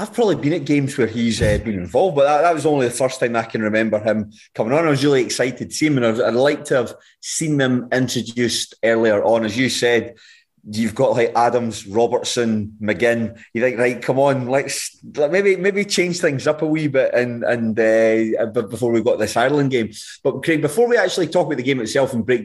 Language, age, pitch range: English, 30-49, 115-140 Hz